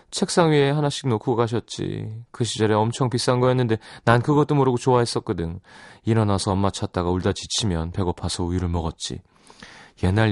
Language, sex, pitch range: Korean, male, 95-140 Hz